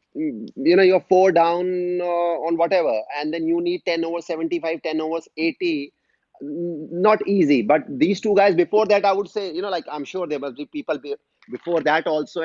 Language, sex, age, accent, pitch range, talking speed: English, male, 30-49, Indian, 155-190 Hz, 200 wpm